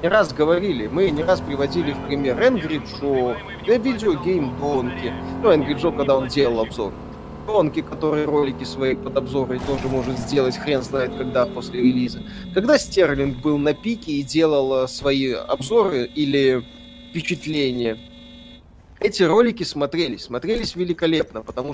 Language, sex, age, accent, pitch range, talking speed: Russian, male, 20-39, native, 130-185 Hz, 140 wpm